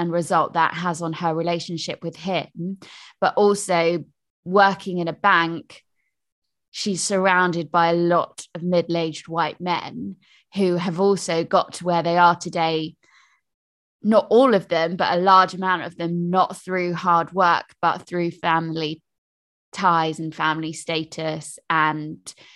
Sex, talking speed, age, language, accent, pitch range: female, 145 wpm, 20-39, English, British, 165-195 Hz